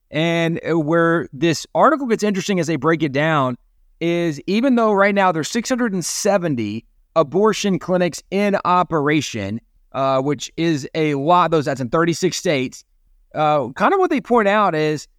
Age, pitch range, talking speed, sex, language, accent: 30-49, 155-195 Hz, 160 wpm, male, English, American